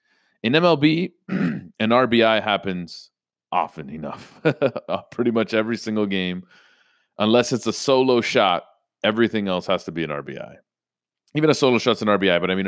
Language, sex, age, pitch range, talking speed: English, male, 30-49, 90-120 Hz, 155 wpm